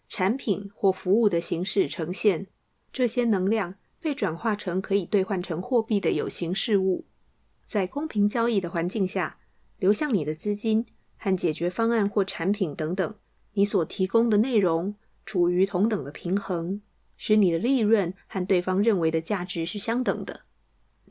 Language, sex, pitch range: Chinese, female, 180-215 Hz